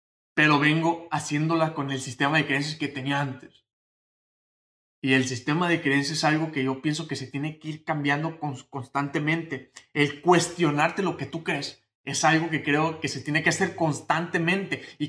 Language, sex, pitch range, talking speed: Spanish, male, 130-160 Hz, 180 wpm